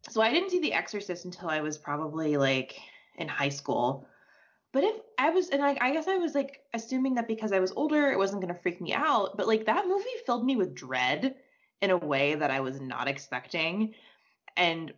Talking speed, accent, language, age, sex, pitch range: 220 wpm, American, English, 20-39, female, 145-225 Hz